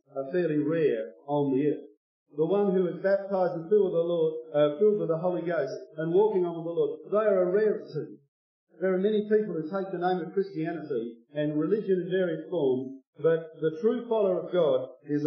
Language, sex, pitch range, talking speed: English, male, 170-230 Hz, 210 wpm